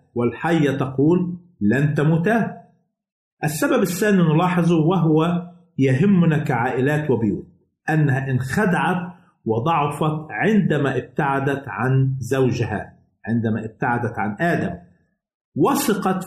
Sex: male